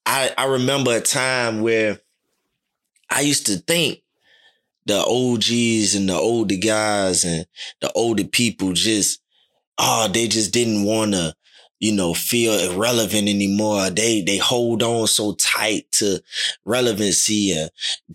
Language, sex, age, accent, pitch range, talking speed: English, male, 20-39, American, 100-120 Hz, 135 wpm